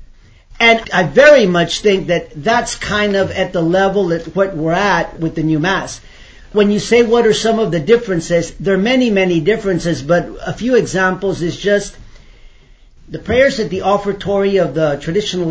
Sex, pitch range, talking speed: male, 165-205 Hz, 185 wpm